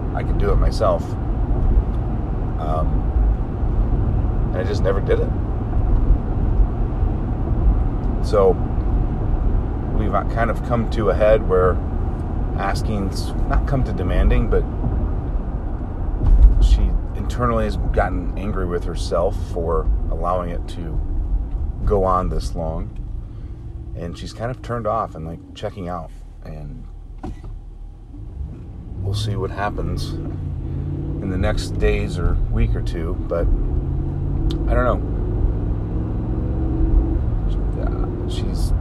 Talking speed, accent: 110 wpm, American